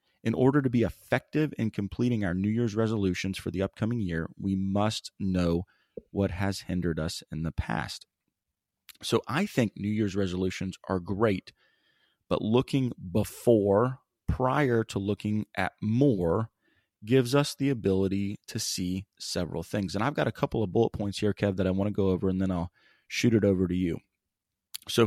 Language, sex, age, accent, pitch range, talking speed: English, male, 30-49, American, 95-115 Hz, 175 wpm